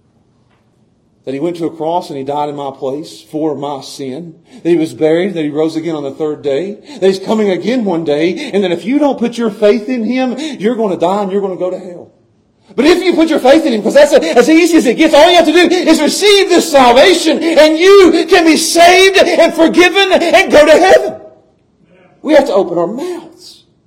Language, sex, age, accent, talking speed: English, male, 40-59, American, 240 wpm